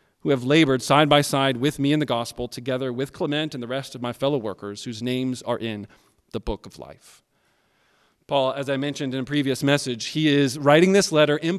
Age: 40-59